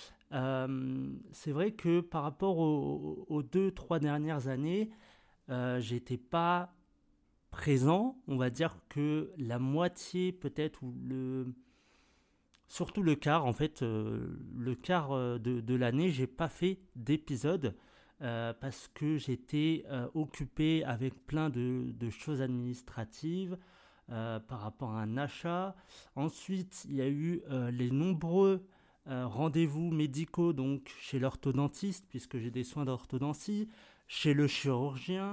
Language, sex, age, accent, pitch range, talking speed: French, male, 40-59, French, 125-170 Hz, 140 wpm